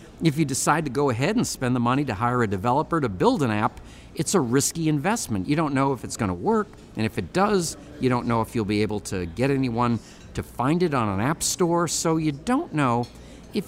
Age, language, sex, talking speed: 50-69, English, male, 240 wpm